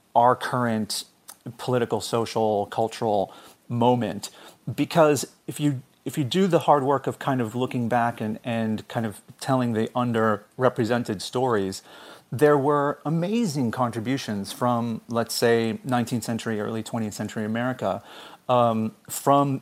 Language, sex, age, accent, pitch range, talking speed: English, male, 30-49, American, 110-135 Hz, 130 wpm